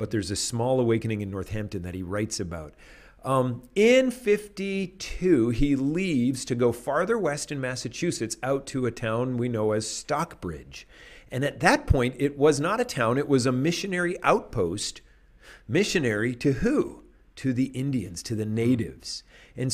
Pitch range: 115-140 Hz